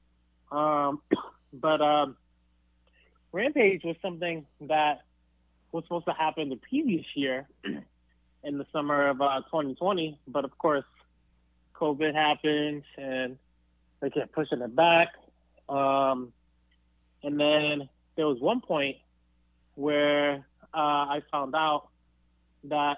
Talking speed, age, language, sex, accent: 115 wpm, 20-39, English, male, American